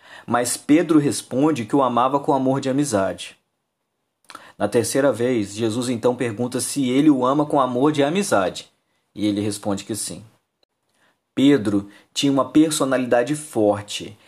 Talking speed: 145 wpm